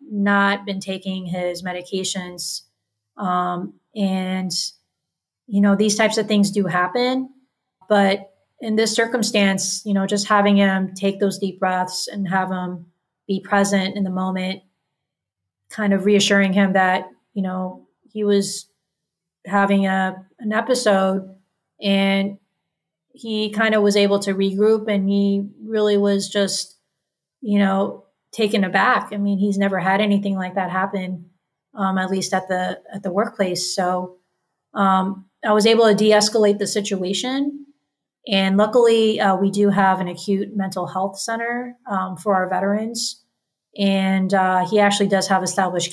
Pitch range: 185-210 Hz